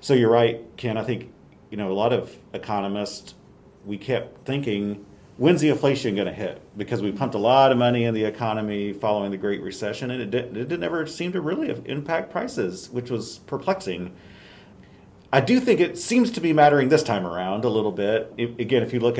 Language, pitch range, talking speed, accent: English, 100-130 Hz, 210 wpm, American